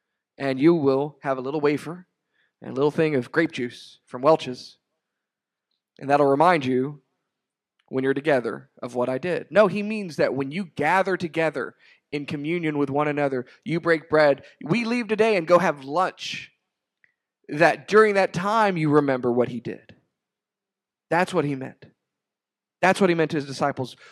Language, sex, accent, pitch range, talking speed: English, male, American, 135-190 Hz, 175 wpm